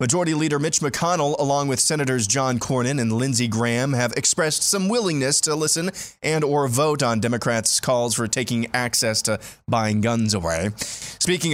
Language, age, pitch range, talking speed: English, 20-39, 120-155 Hz, 165 wpm